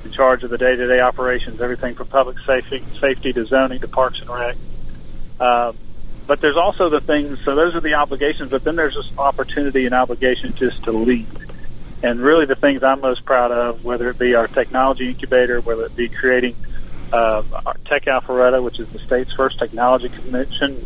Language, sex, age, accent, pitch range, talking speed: English, male, 40-59, American, 120-130 Hz, 195 wpm